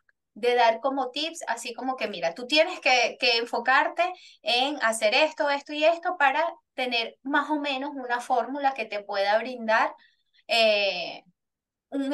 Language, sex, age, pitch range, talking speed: Spanish, female, 10-29, 225-285 Hz, 160 wpm